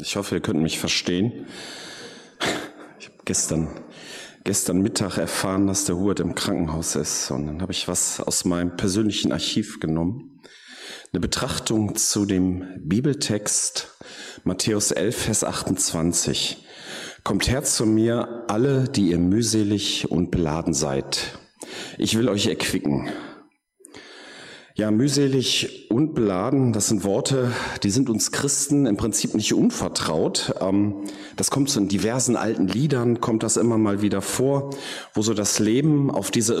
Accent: German